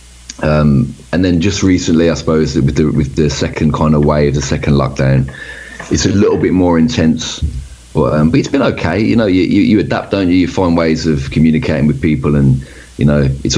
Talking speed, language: 210 wpm, English